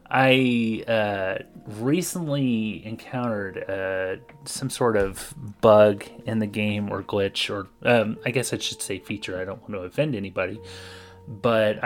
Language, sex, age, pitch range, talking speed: English, male, 30-49, 105-130 Hz, 145 wpm